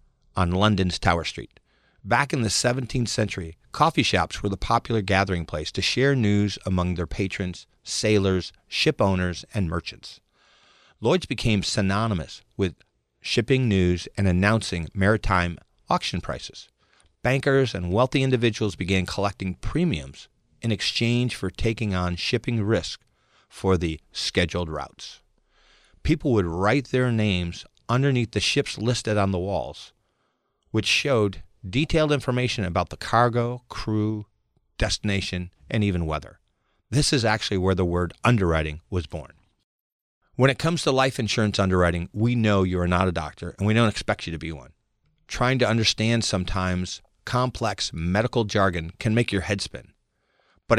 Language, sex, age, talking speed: English, male, 50-69, 145 wpm